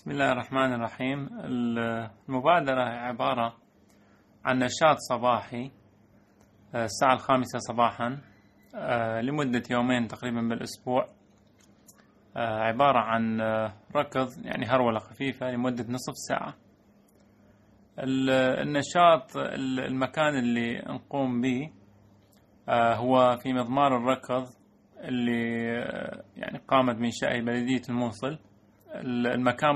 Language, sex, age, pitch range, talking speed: Arabic, male, 30-49, 115-130 Hz, 85 wpm